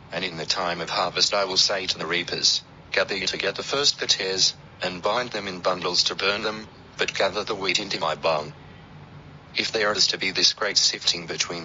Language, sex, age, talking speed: English, male, 40-59, 215 wpm